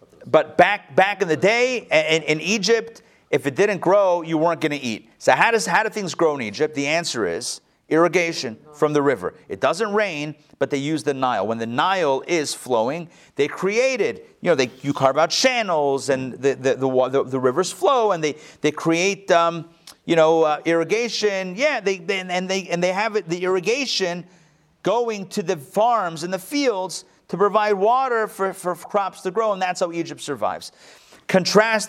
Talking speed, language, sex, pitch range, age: 200 wpm, English, male, 140-190 Hz, 40-59